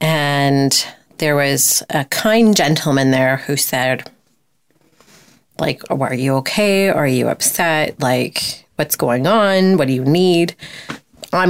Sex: female